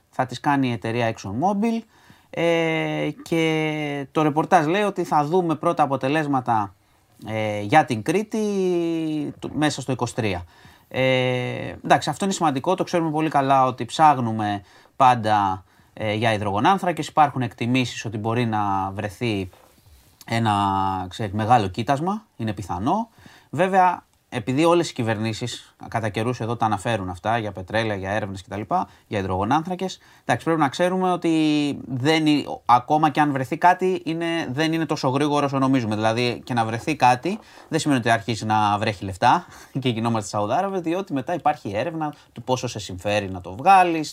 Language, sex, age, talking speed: Greek, male, 30-49, 140 wpm